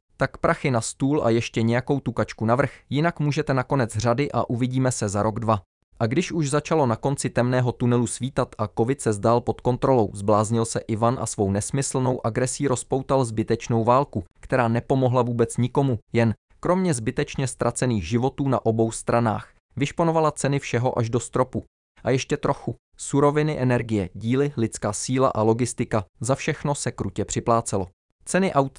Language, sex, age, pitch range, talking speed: English, male, 20-39, 115-135 Hz, 165 wpm